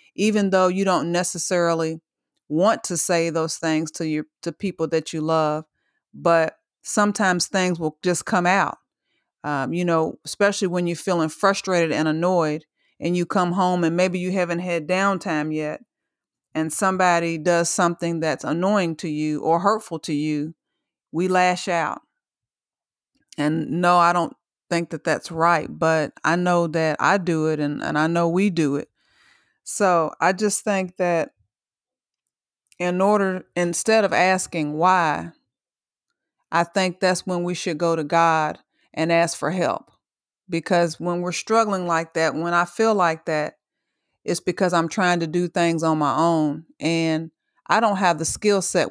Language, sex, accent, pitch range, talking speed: English, female, American, 160-180 Hz, 165 wpm